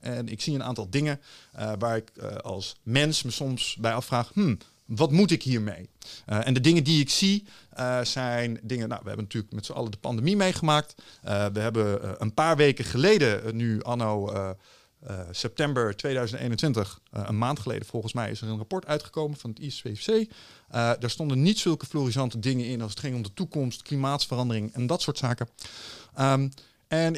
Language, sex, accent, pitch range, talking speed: Dutch, male, Dutch, 115-155 Hz, 190 wpm